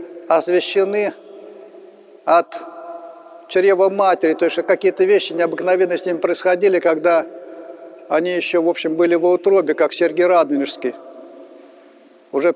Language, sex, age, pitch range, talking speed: Russian, male, 50-69, 160-180 Hz, 115 wpm